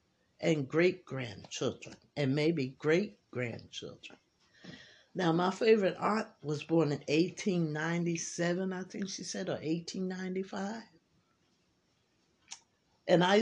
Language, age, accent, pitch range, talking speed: English, 50-69, American, 150-190 Hz, 85 wpm